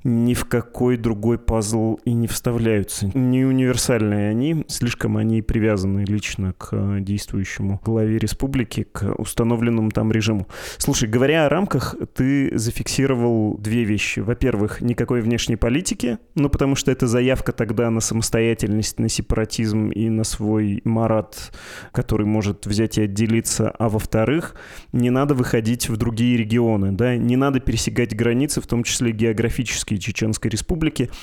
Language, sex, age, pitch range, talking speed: Russian, male, 20-39, 110-125 Hz, 140 wpm